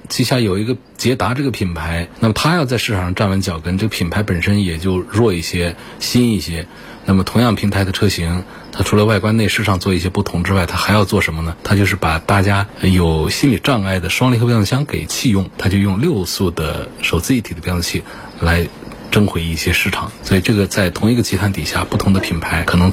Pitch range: 90-115 Hz